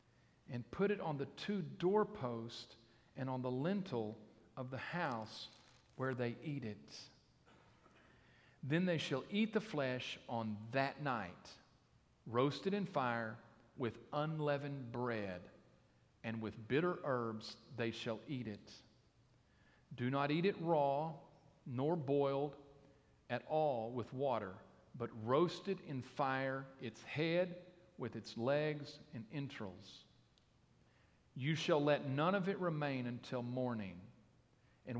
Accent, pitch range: American, 115-155 Hz